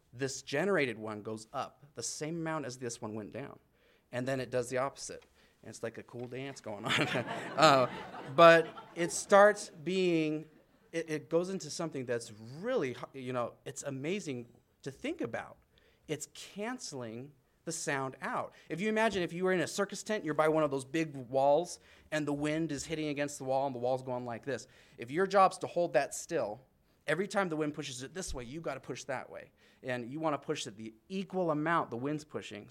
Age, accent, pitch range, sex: 30-49, American, 120-165 Hz, male